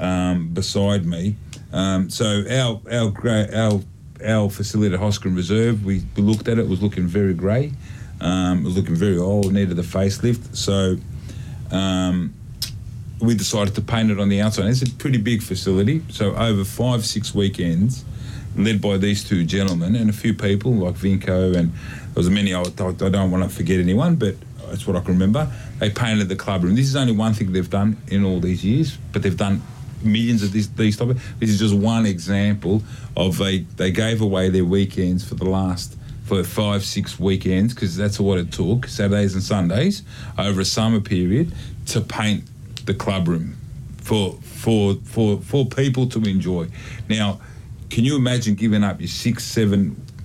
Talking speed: 185 wpm